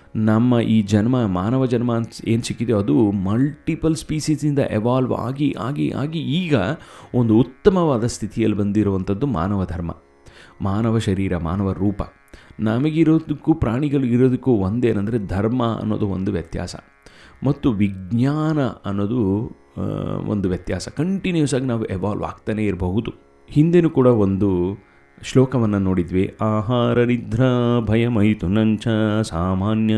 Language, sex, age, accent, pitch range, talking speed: Kannada, male, 30-49, native, 95-130 Hz, 110 wpm